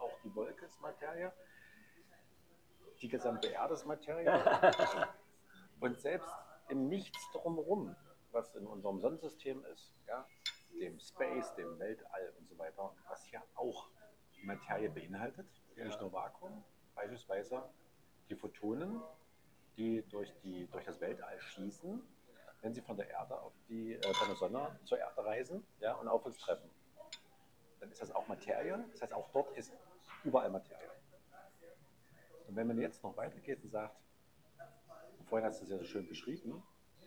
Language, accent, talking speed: German, German, 145 wpm